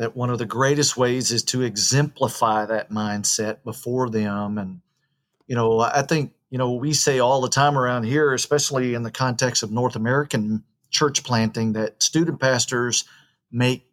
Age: 40-59